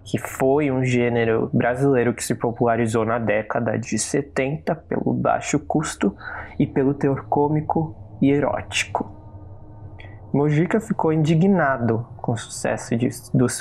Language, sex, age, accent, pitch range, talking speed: Portuguese, male, 20-39, Brazilian, 105-130 Hz, 125 wpm